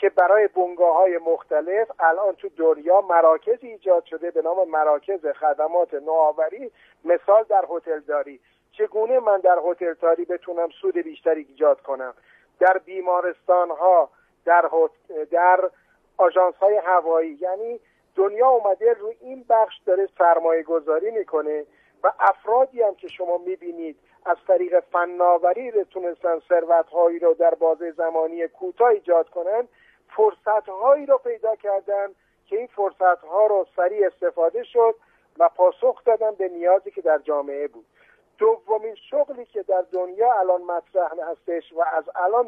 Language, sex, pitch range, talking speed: Persian, male, 170-225 Hz, 140 wpm